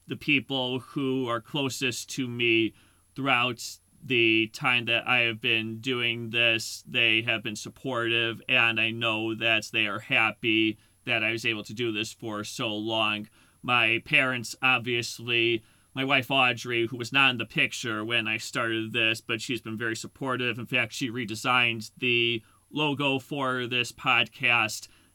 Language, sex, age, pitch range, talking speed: English, male, 30-49, 110-125 Hz, 160 wpm